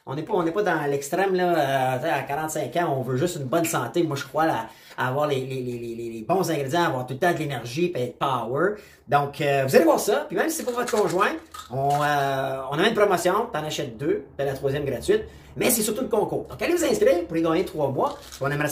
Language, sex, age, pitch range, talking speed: French, male, 30-49, 130-175 Hz, 255 wpm